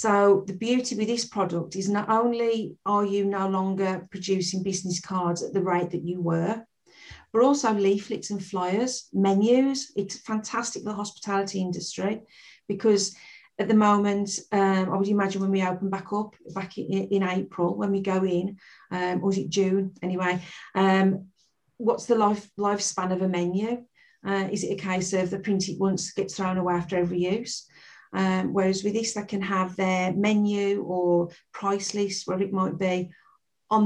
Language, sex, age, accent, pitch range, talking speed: English, female, 40-59, British, 185-205 Hz, 180 wpm